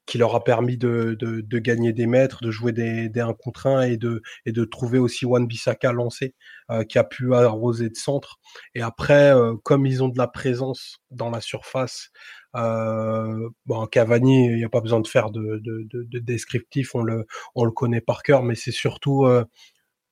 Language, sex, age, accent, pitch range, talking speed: French, male, 20-39, French, 115-130 Hz, 210 wpm